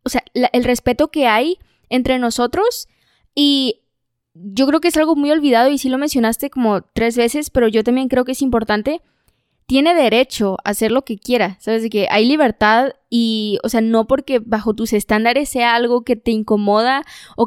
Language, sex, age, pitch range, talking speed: Spanish, female, 20-39, 225-290 Hz, 195 wpm